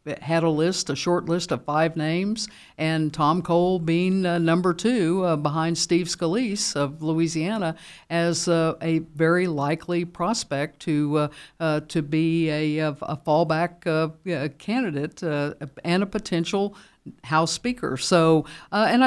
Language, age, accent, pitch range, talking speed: English, 60-79, American, 155-185 Hz, 150 wpm